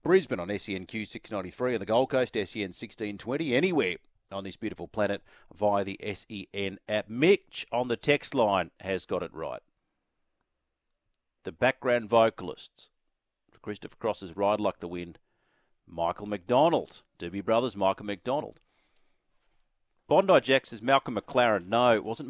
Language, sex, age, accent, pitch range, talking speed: English, male, 40-59, Australian, 95-125 Hz, 135 wpm